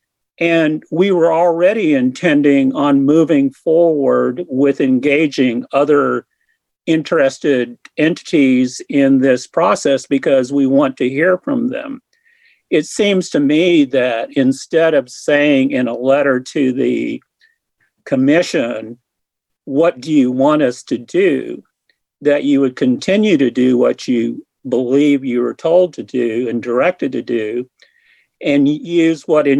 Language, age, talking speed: English, 50-69, 135 wpm